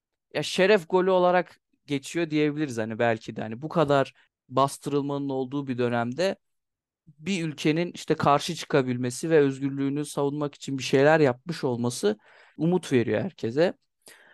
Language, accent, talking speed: Turkish, native, 135 wpm